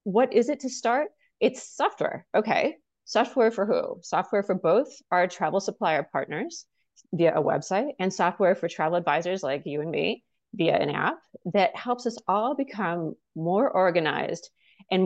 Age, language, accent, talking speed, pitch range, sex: 30-49, English, American, 165 wpm, 165-235 Hz, female